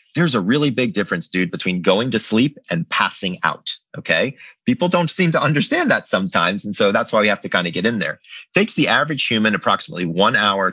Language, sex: English, male